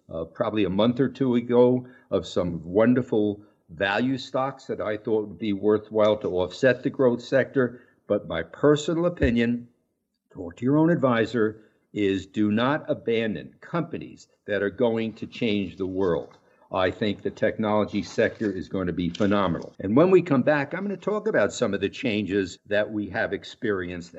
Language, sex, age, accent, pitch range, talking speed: English, male, 60-79, American, 100-140 Hz, 180 wpm